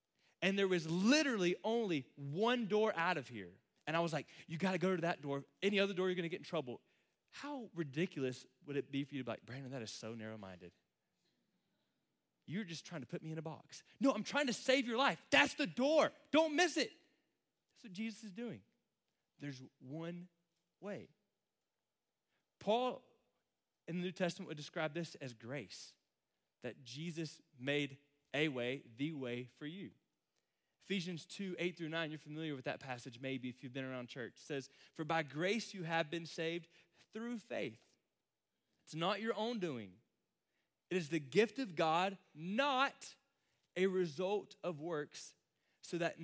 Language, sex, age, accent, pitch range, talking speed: English, male, 30-49, American, 150-195 Hz, 180 wpm